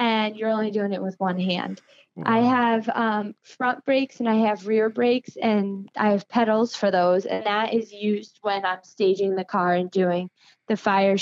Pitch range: 200-240 Hz